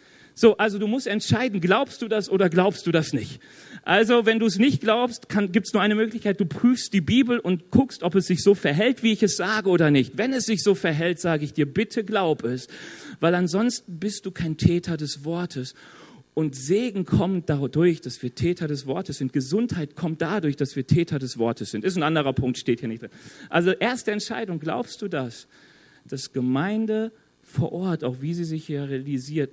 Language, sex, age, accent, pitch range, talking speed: German, male, 40-59, German, 115-185 Hz, 210 wpm